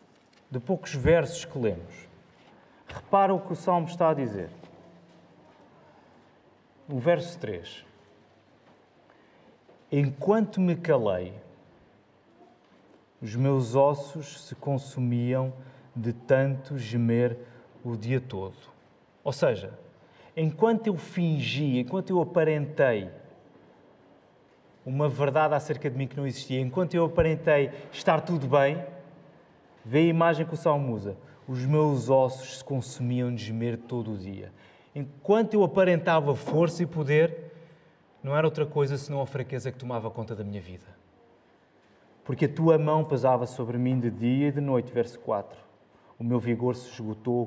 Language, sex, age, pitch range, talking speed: Portuguese, male, 30-49, 125-160 Hz, 135 wpm